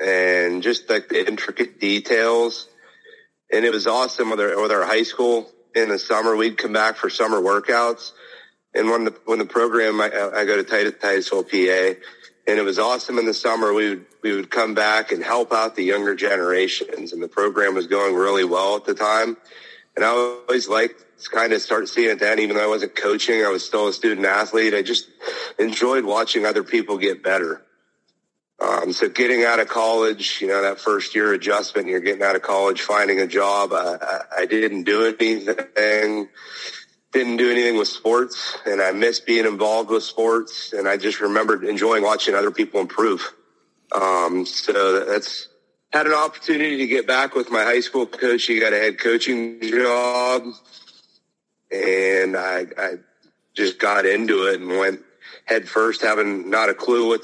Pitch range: 105-150 Hz